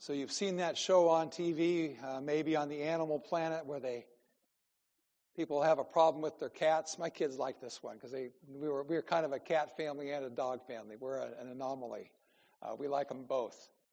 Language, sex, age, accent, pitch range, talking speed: English, male, 60-79, American, 150-205 Hz, 220 wpm